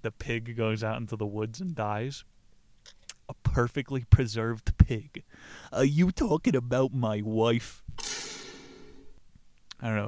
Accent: American